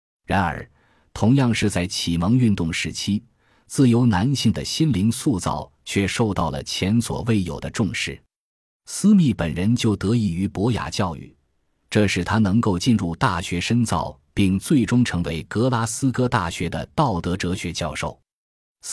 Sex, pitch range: male, 85-115 Hz